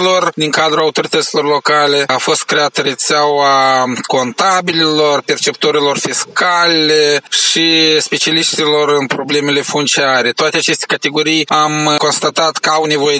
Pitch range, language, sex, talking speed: 145-170 Hz, Romanian, male, 110 wpm